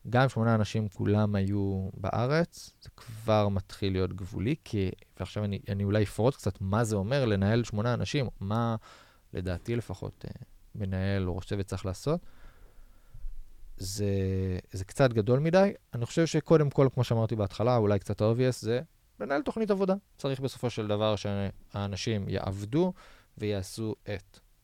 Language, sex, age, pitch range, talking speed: Hebrew, male, 20-39, 100-125 Hz, 145 wpm